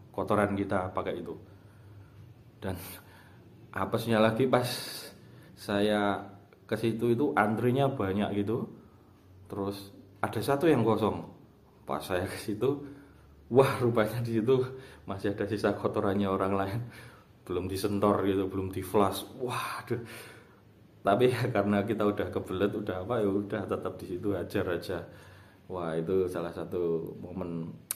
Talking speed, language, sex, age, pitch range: 130 wpm, Indonesian, male, 30-49, 95-110 Hz